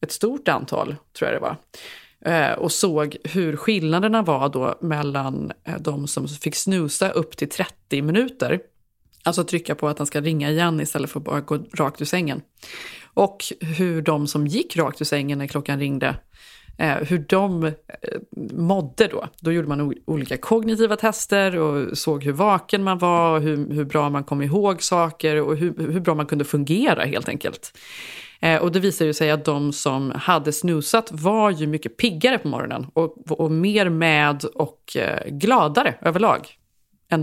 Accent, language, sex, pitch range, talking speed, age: Swedish, English, female, 150-190 Hz, 175 wpm, 30-49